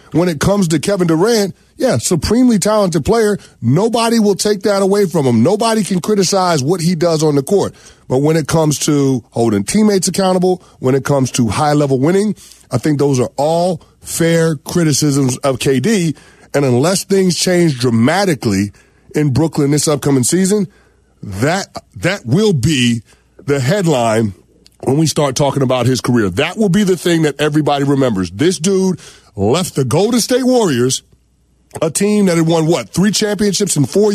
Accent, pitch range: American, 140-205 Hz